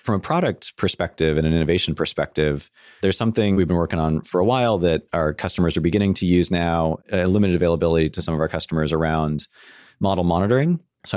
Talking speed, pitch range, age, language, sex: 200 wpm, 80-90 Hz, 30-49, English, male